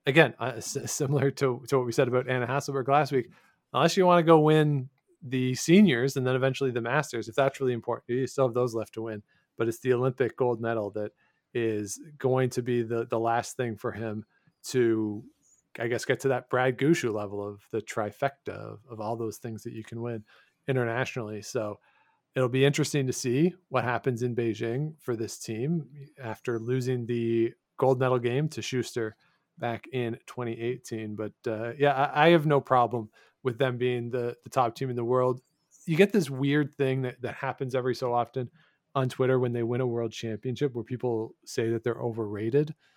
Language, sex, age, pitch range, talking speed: English, male, 40-59, 115-140 Hz, 200 wpm